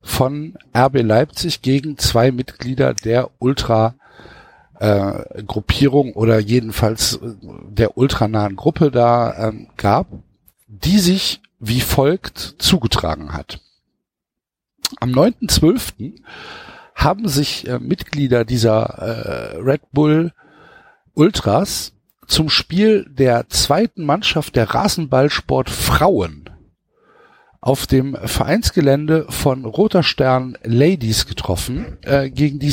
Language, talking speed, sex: German, 95 wpm, male